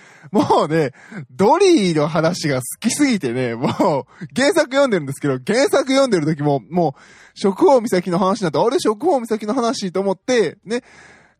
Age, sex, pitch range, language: 20-39, male, 145-210 Hz, Japanese